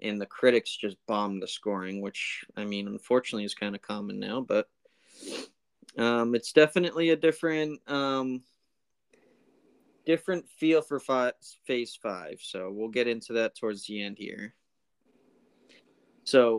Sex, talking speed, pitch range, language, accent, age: male, 140 wpm, 105-130 Hz, English, American, 20-39